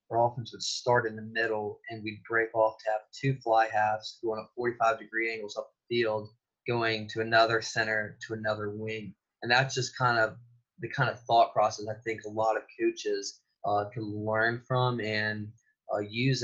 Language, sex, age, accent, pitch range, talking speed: English, male, 20-39, American, 110-120 Hz, 195 wpm